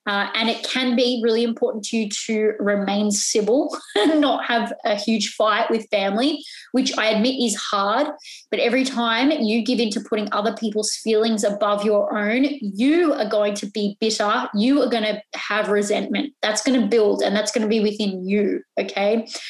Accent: Australian